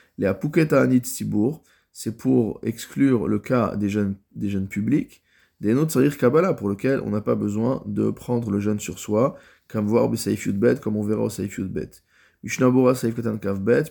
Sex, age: male, 20-39